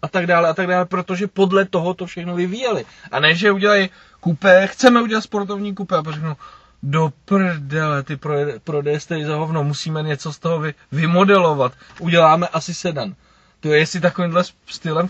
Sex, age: male, 20-39